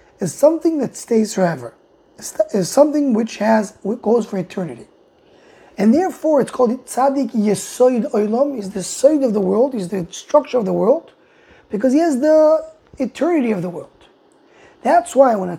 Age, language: 20-39, English